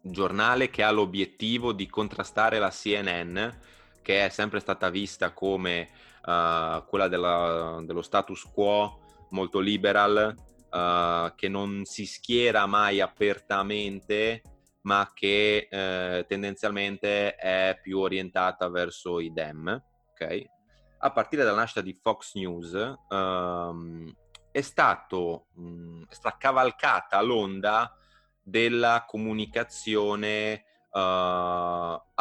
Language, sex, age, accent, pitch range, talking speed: Italian, male, 30-49, native, 90-105 Hz, 100 wpm